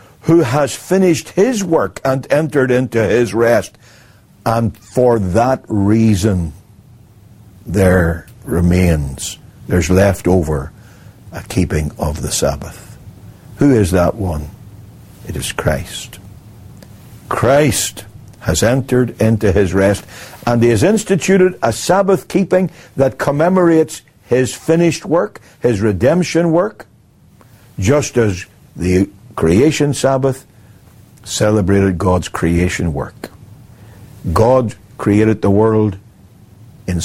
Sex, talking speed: male, 105 wpm